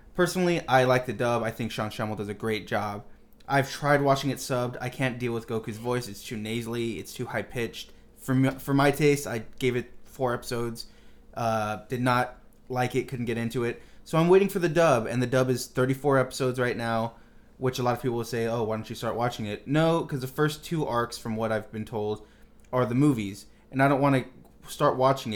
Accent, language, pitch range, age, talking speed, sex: American, English, 110-135 Hz, 20-39, 230 wpm, male